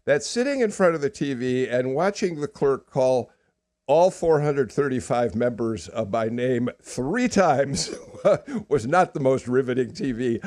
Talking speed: 150 wpm